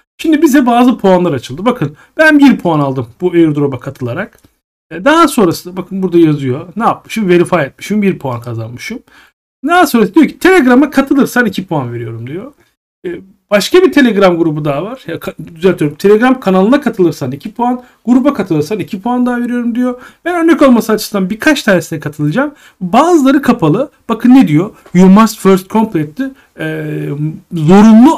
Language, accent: Turkish, native